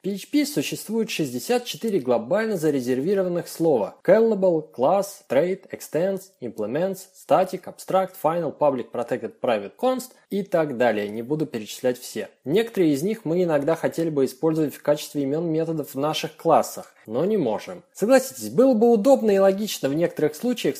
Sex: male